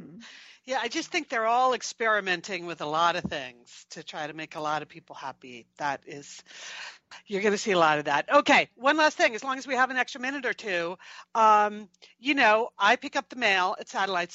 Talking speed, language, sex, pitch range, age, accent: 230 wpm, English, female, 195-275 Hz, 50-69, American